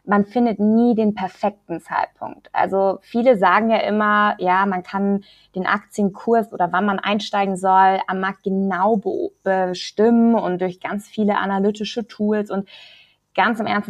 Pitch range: 185-215 Hz